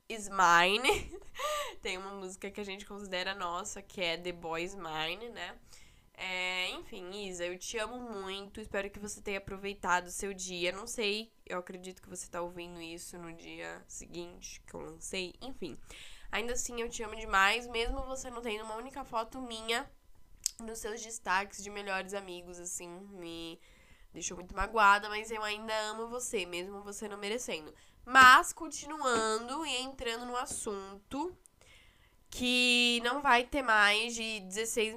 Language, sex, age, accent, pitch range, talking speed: Portuguese, female, 10-29, Brazilian, 185-235 Hz, 160 wpm